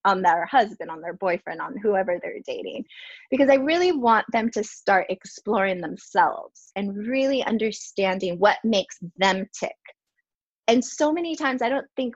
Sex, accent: female, American